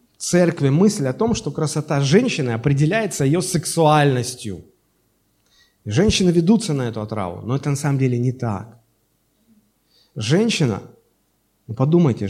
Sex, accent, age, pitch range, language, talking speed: male, native, 30-49, 110-150 Hz, Russian, 130 wpm